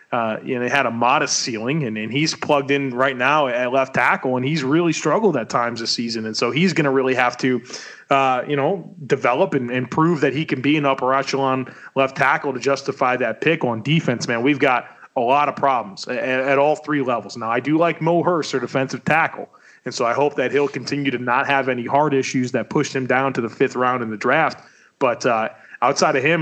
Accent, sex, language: American, male, English